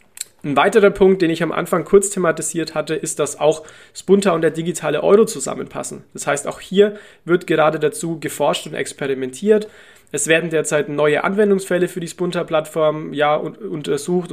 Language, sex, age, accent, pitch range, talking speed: German, male, 30-49, German, 145-180 Hz, 160 wpm